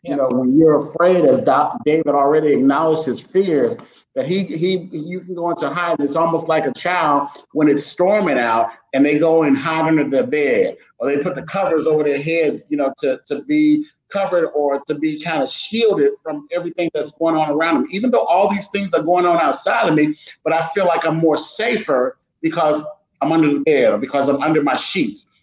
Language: English